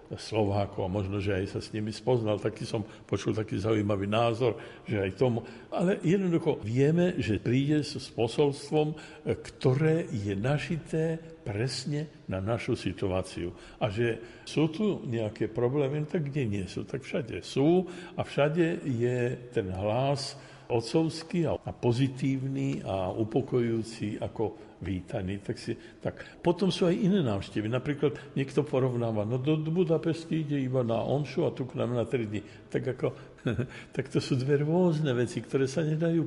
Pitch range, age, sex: 110-140 Hz, 60-79, male